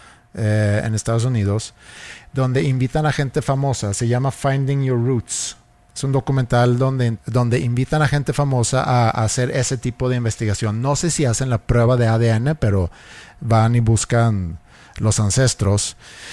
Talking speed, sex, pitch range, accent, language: 160 wpm, male, 105-130 Hz, Mexican, Spanish